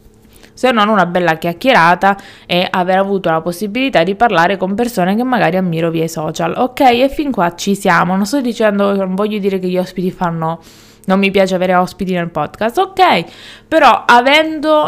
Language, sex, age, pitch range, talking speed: Italian, female, 20-39, 175-225 Hz, 185 wpm